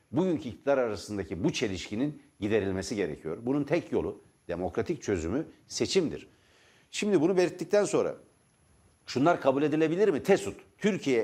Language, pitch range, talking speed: Turkish, 110-165 Hz, 125 wpm